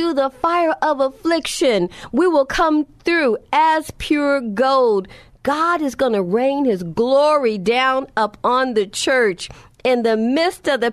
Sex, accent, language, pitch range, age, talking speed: female, American, English, 220-295 Hz, 40-59, 150 wpm